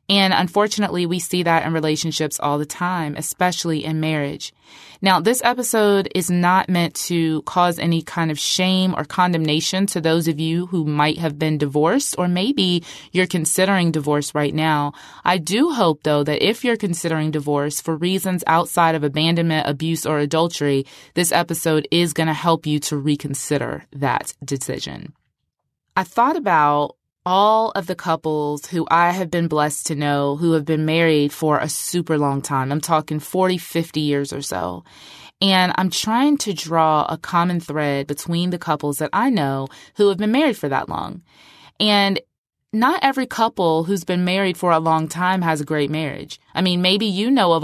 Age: 20-39